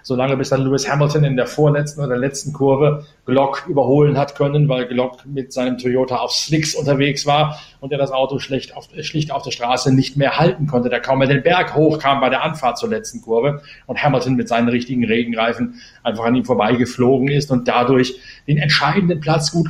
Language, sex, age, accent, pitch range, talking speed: German, male, 40-59, German, 130-155 Hz, 205 wpm